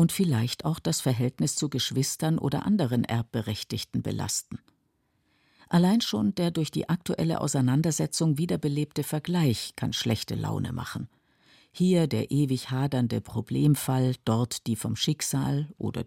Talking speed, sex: 125 wpm, female